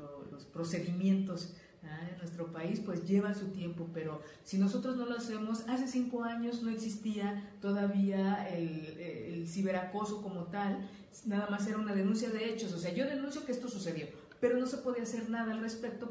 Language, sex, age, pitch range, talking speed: Spanish, female, 40-59, 185-225 Hz, 185 wpm